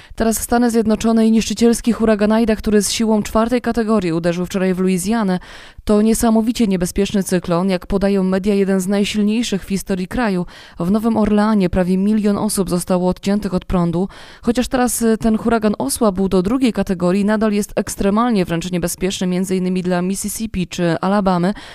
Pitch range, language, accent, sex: 185-225 Hz, Polish, native, female